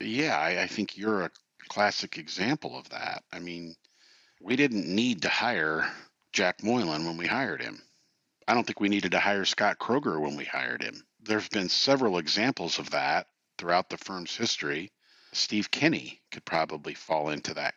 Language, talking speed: English, 180 wpm